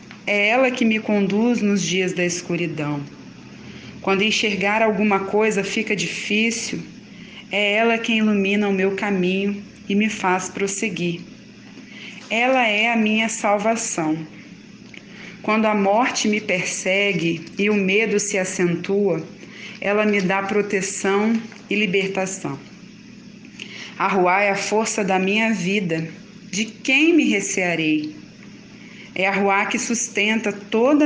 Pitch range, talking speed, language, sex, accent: 190-220 Hz, 125 wpm, Portuguese, female, Brazilian